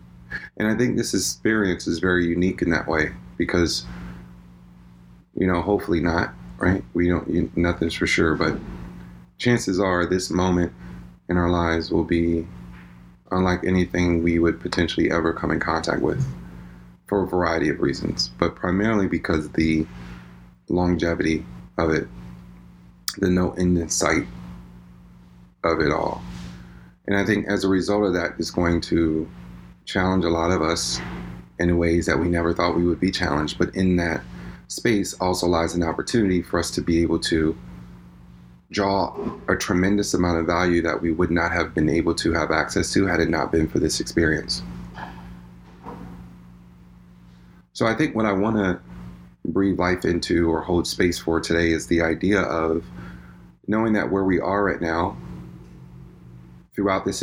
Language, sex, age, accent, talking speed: English, male, 30-49, American, 160 wpm